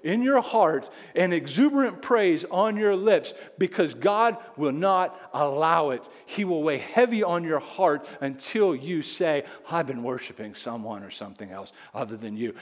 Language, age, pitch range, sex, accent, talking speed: English, 50-69, 140-205 Hz, male, American, 165 wpm